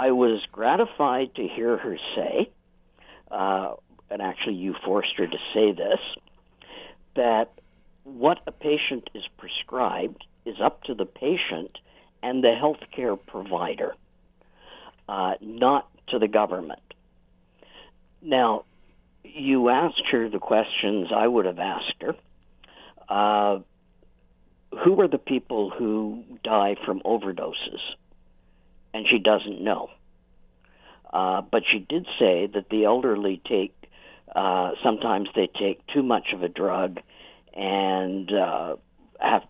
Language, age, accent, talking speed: English, 60-79, American, 125 wpm